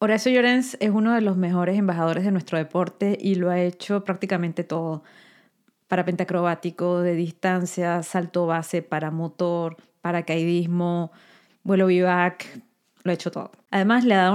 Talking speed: 150 wpm